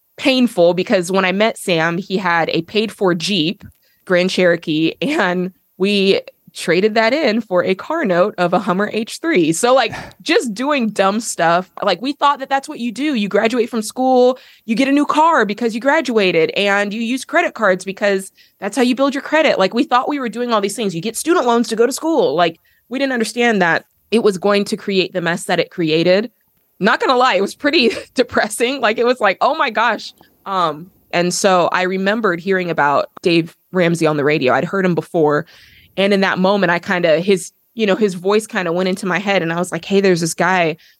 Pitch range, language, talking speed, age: 175-230 Hz, English, 225 wpm, 20-39